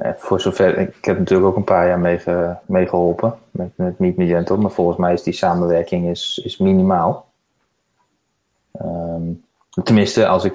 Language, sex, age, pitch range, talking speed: Dutch, male, 20-39, 85-95 Hz, 135 wpm